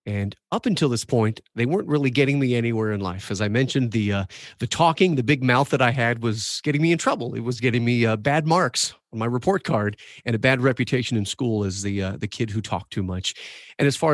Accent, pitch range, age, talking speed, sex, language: American, 110-140 Hz, 30-49, 255 wpm, male, English